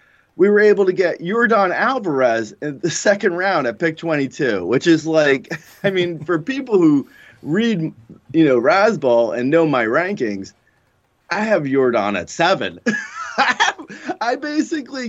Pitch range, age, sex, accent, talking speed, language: 125-190 Hz, 20-39, male, American, 155 wpm, English